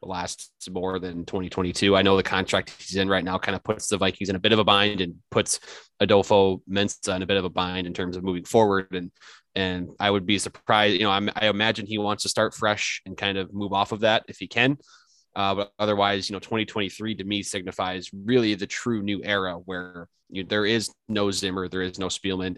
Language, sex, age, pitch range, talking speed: English, male, 20-39, 95-105 Hz, 230 wpm